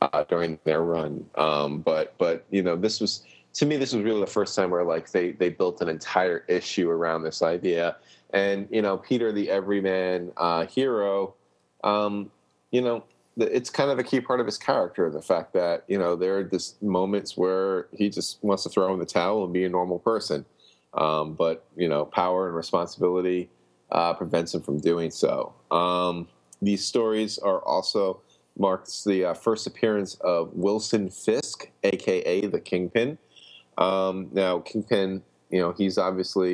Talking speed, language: 180 wpm, English